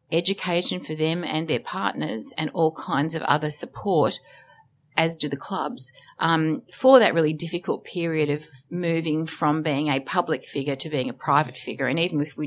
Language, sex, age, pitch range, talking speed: English, female, 30-49, 150-175 Hz, 185 wpm